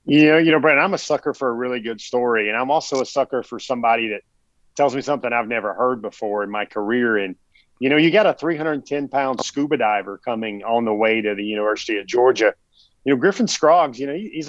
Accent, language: American, English